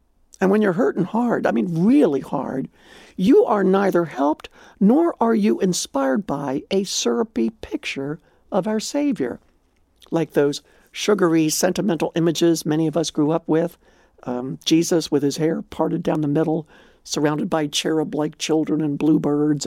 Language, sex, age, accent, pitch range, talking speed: English, male, 60-79, American, 155-230 Hz, 155 wpm